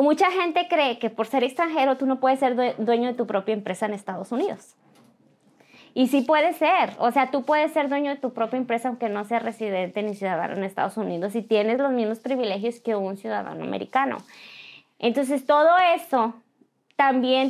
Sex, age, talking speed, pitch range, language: female, 20-39, 190 wpm, 230-280 Hz, English